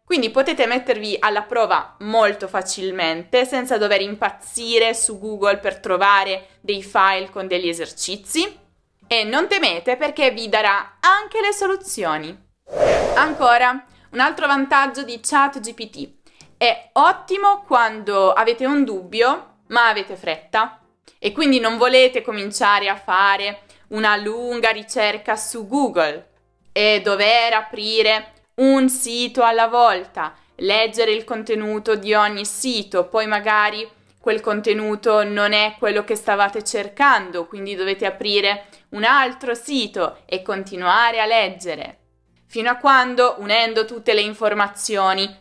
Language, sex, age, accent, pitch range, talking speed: Italian, female, 20-39, native, 200-245 Hz, 125 wpm